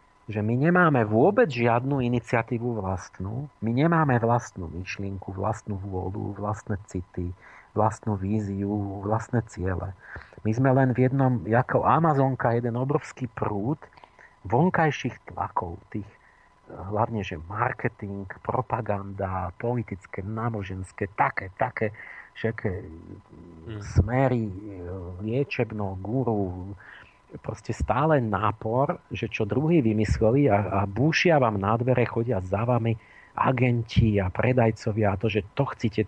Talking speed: 115 wpm